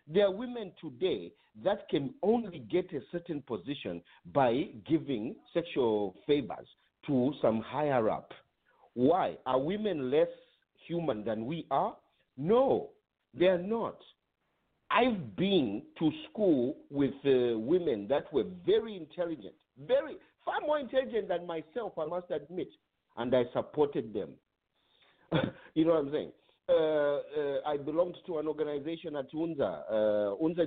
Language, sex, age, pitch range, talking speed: English, male, 50-69, 140-215 Hz, 135 wpm